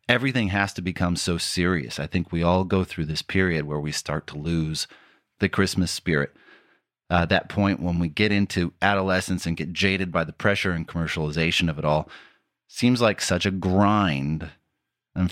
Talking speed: 185 wpm